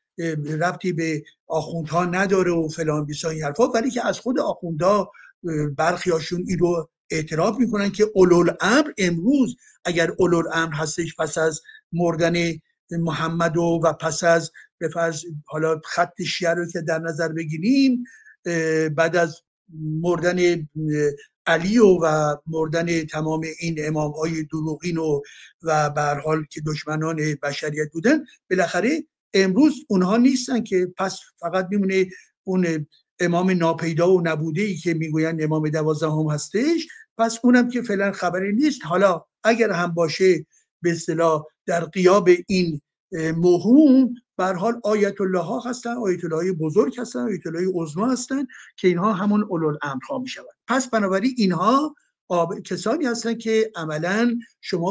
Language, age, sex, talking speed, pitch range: Persian, 50-69, male, 140 wpm, 160-210 Hz